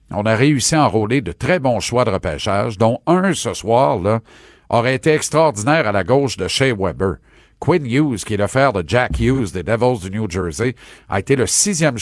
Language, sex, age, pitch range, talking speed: French, male, 50-69, 105-140 Hz, 215 wpm